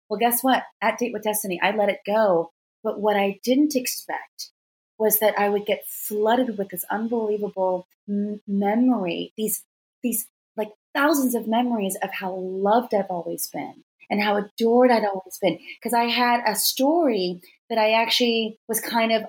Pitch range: 195-230 Hz